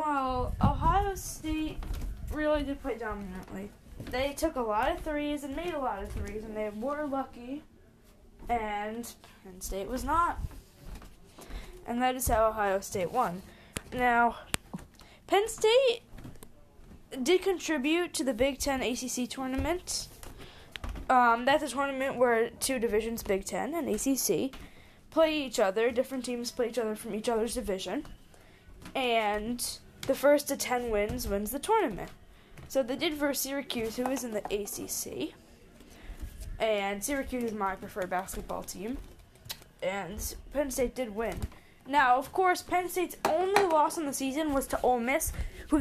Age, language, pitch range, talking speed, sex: 10-29, English, 230-300 Hz, 150 wpm, female